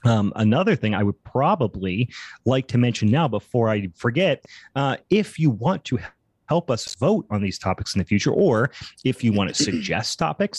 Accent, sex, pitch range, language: American, male, 105-135 Hz, English